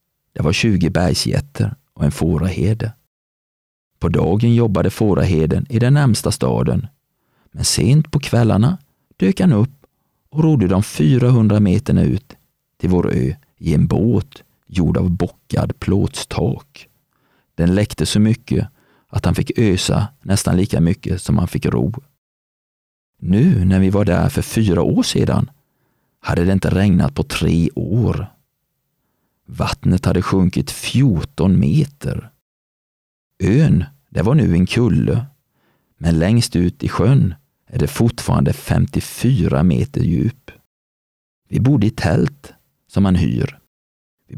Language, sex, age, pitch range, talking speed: Swedish, male, 40-59, 90-115 Hz, 135 wpm